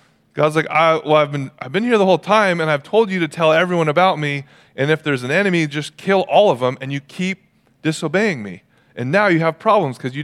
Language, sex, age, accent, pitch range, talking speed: English, male, 30-49, American, 150-205 Hz, 250 wpm